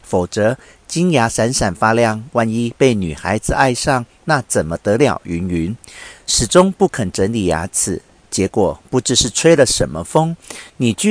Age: 50-69